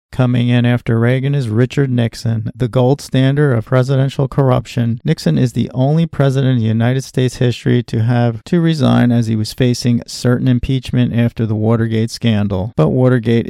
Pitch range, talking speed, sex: 115-140 Hz, 175 wpm, male